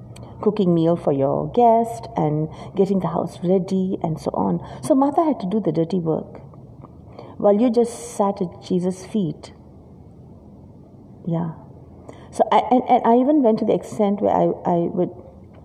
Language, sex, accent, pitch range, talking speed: English, female, Indian, 165-210 Hz, 165 wpm